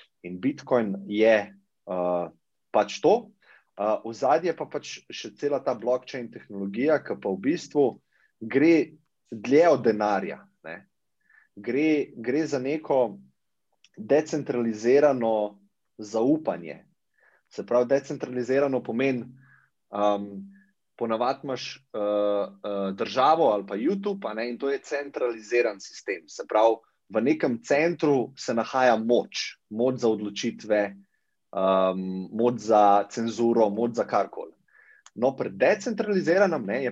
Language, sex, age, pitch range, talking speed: English, male, 30-49, 105-140 Hz, 110 wpm